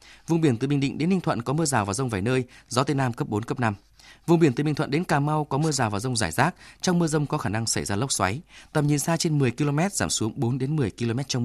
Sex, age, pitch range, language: male, 20-39, 115-155 Hz, Vietnamese